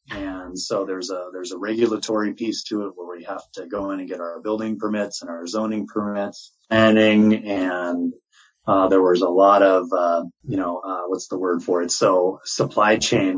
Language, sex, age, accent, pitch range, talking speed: English, male, 30-49, American, 90-110 Hz, 200 wpm